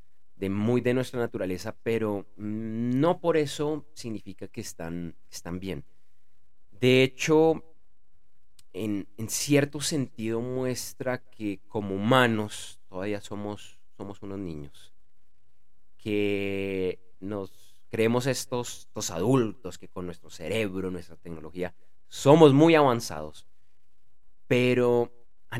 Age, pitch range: 30-49, 90-120 Hz